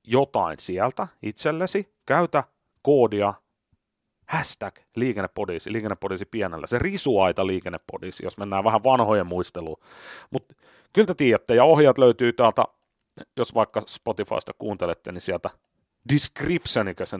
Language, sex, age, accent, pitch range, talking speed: Finnish, male, 30-49, native, 110-150 Hz, 115 wpm